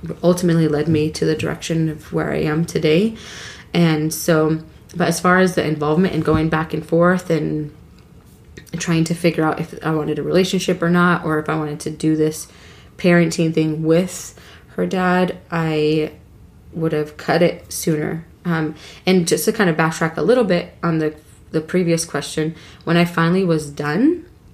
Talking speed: 180 wpm